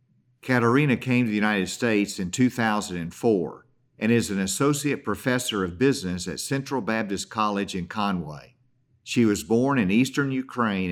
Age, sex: 50-69, male